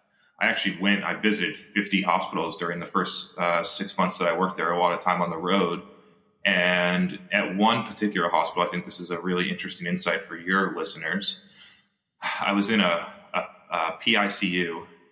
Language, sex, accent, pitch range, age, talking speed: English, male, American, 85-100 Hz, 20-39, 185 wpm